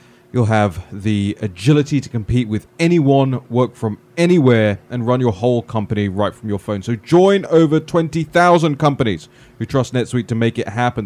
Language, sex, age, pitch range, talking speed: English, male, 20-39, 120-155 Hz, 175 wpm